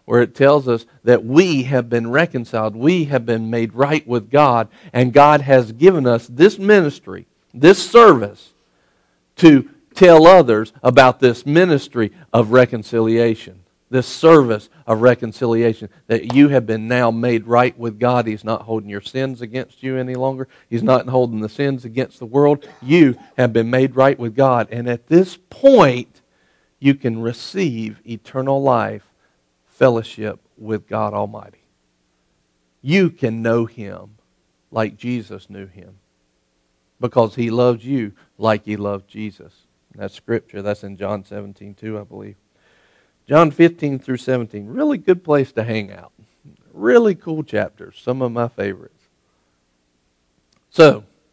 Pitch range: 105-135 Hz